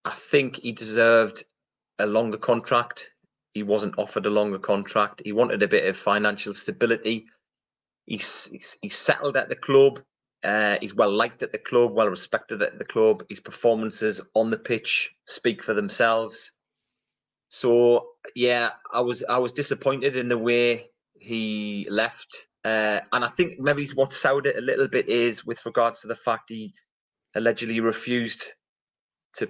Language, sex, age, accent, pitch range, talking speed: English, male, 30-49, British, 110-125 Hz, 165 wpm